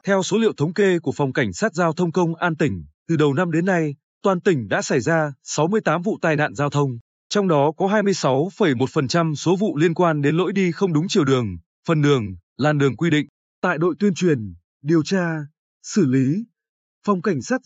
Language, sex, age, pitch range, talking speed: Vietnamese, male, 20-39, 140-190 Hz, 210 wpm